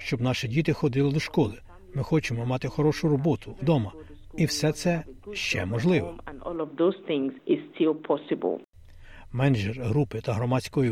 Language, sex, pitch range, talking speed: Ukrainian, male, 115-155 Hz, 115 wpm